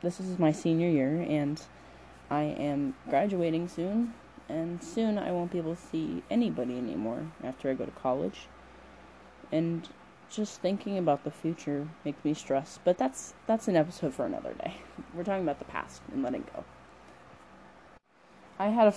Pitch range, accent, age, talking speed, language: 135-180 Hz, American, 20-39, 170 wpm, English